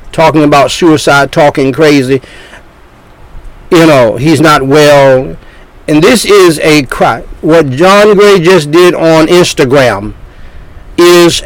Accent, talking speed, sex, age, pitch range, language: American, 120 wpm, male, 60-79, 145-180 Hz, English